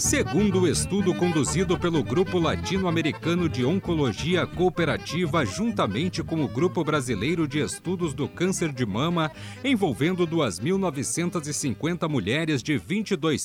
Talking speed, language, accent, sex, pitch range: 115 wpm, Portuguese, Brazilian, male, 150-180 Hz